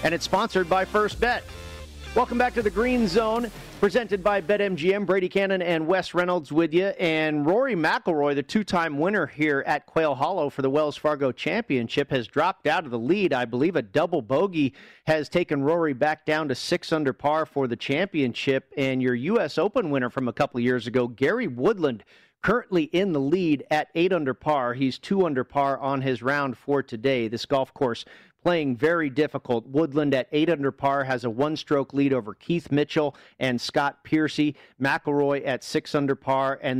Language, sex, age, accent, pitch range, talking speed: English, male, 40-59, American, 130-160 Hz, 180 wpm